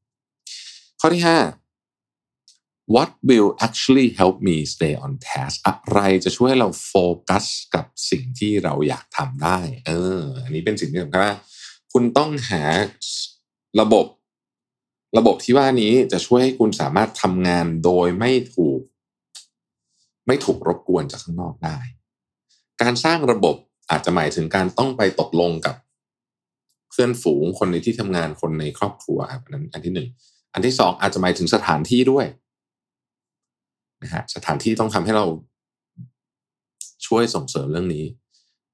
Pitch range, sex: 85-125 Hz, male